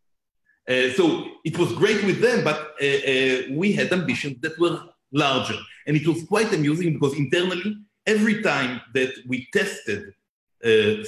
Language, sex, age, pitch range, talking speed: English, male, 50-69, 145-210 Hz, 155 wpm